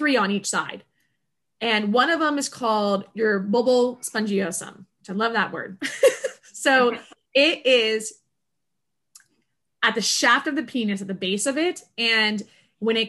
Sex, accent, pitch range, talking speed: female, American, 200-250 Hz, 160 wpm